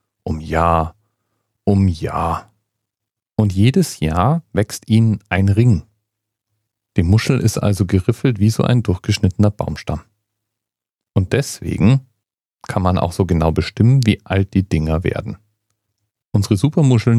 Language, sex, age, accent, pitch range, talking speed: German, male, 40-59, German, 90-115 Hz, 125 wpm